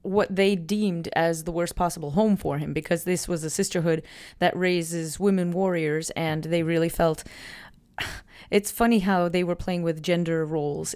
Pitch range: 160-185 Hz